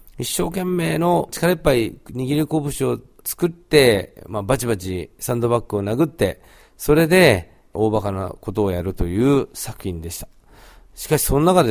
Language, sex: Japanese, male